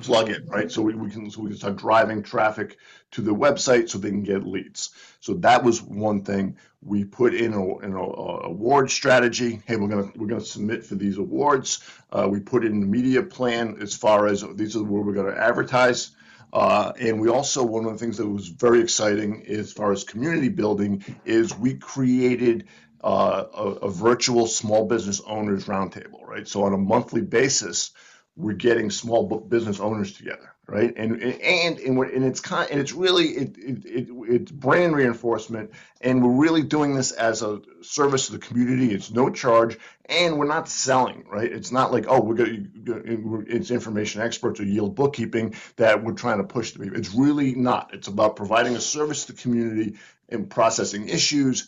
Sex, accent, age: male, American, 50-69